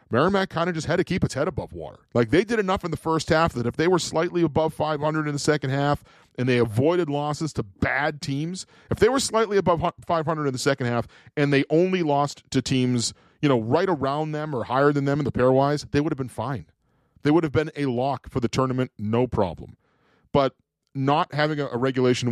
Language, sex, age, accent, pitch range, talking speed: English, male, 40-59, American, 115-155 Hz, 230 wpm